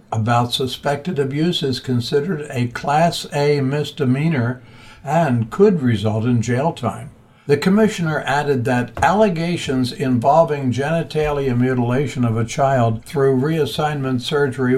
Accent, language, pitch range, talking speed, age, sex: American, English, 125-155 Hz, 120 wpm, 60-79, male